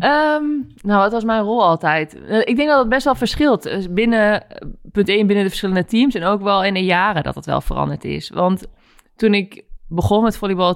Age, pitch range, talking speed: 20-39, 155-175 Hz, 210 wpm